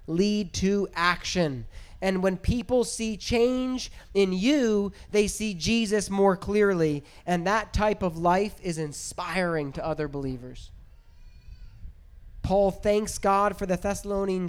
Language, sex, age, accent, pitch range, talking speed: English, male, 30-49, American, 175-220 Hz, 130 wpm